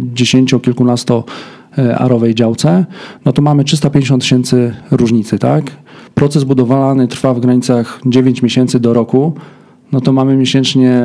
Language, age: Polish, 40-59